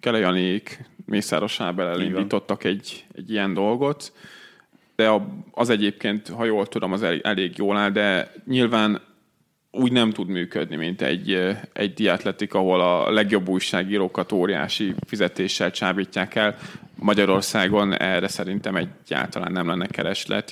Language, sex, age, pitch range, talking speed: Hungarian, male, 30-49, 95-105 Hz, 125 wpm